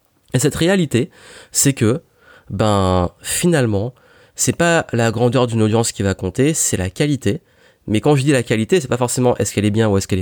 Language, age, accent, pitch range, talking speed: French, 20-39, French, 110-150 Hz, 205 wpm